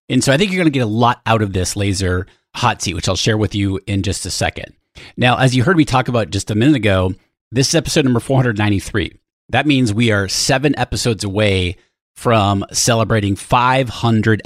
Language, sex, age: English, male, 30-49